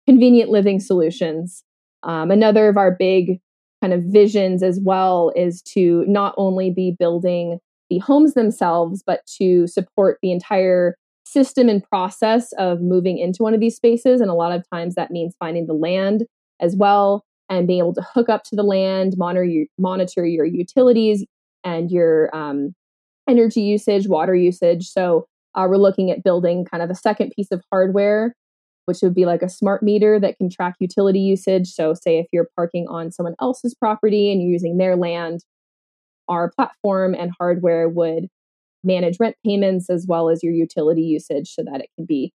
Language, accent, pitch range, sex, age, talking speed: English, American, 170-200 Hz, female, 20-39, 180 wpm